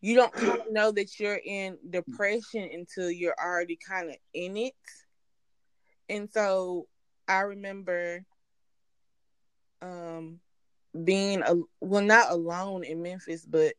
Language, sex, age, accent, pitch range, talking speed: English, female, 20-39, American, 165-195 Hz, 115 wpm